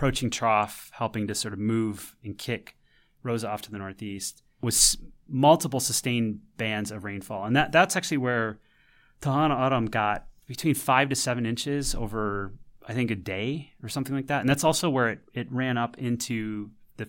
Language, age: English, 30-49